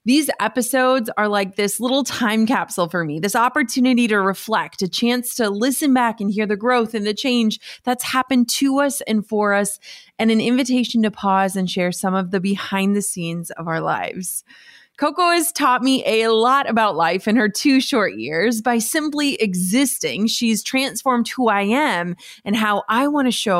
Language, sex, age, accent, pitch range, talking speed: English, female, 20-39, American, 195-250 Hz, 195 wpm